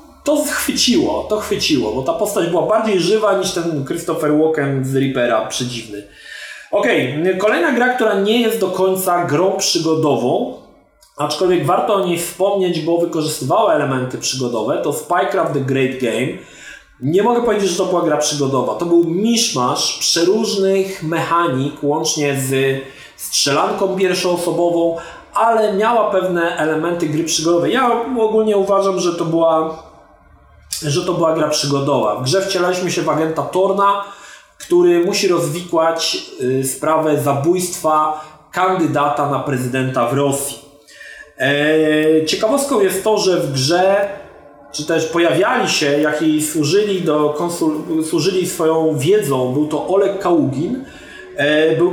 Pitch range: 150-195 Hz